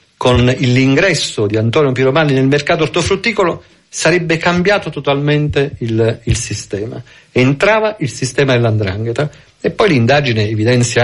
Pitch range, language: 115-155 Hz, Italian